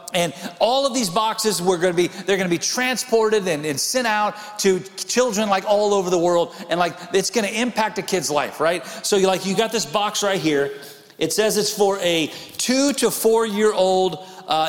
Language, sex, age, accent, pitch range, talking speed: English, male, 40-59, American, 175-225 Hz, 225 wpm